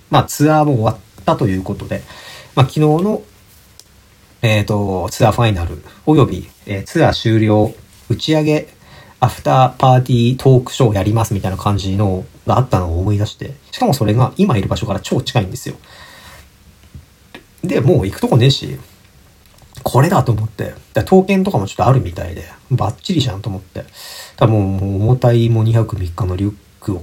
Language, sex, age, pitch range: Japanese, male, 40-59, 95-125 Hz